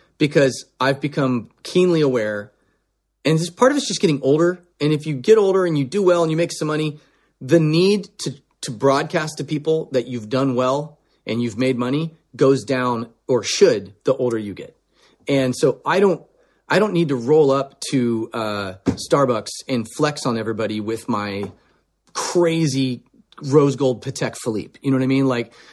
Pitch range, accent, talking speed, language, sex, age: 130-160 Hz, American, 185 wpm, English, male, 30-49